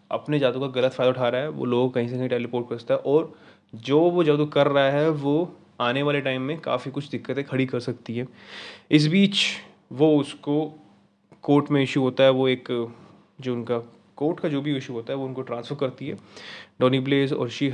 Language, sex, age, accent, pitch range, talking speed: Hindi, male, 20-39, native, 125-145 Hz, 215 wpm